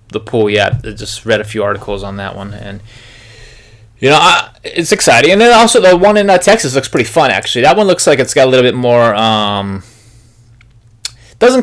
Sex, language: male, English